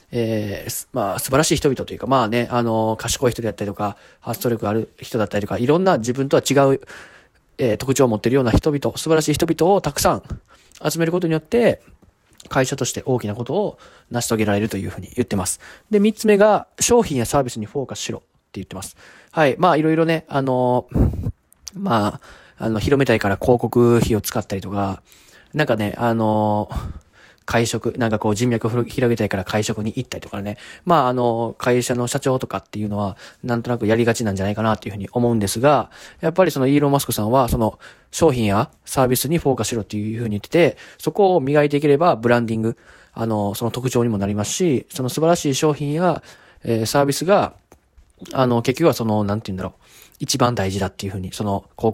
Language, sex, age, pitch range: Japanese, male, 20-39, 105-140 Hz